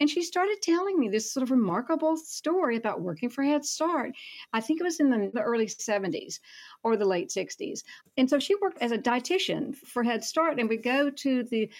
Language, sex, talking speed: English, female, 220 wpm